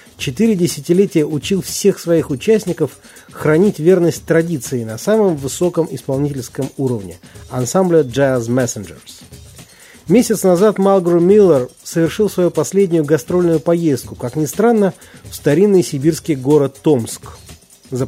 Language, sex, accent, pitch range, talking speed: Russian, male, native, 125-170 Hz, 115 wpm